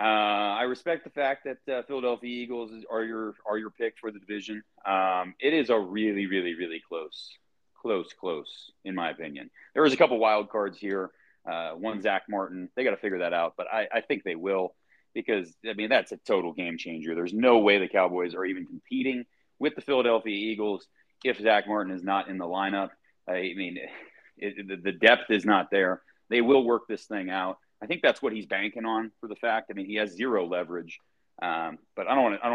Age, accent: 30-49, American